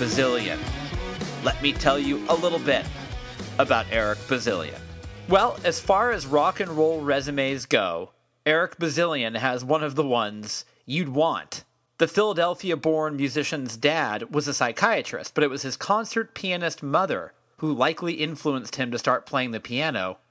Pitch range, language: 125-160 Hz, English